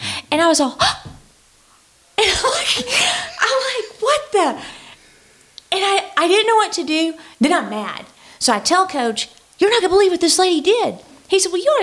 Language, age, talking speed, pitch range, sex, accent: English, 40-59, 205 wpm, 215-310 Hz, female, American